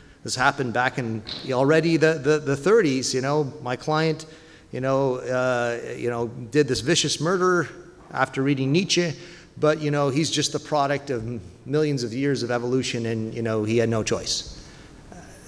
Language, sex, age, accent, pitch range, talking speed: English, male, 40-59, American, 120-160 Hz, 180 wpm